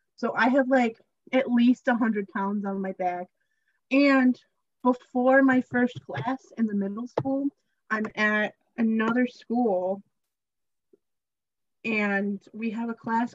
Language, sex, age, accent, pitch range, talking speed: English, female, 20-39, American, 225-285 Hz, 135 wpm